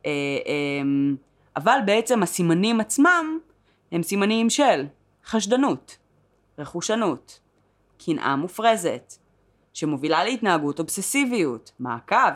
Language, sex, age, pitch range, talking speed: Hebrew, female, 20-39, 145-205 Hz, 75 wpm